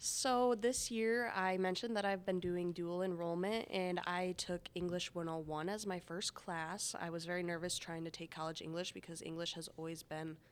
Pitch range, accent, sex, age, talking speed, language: 170-195 Hz, American, female, 20-39, 195 wpm, English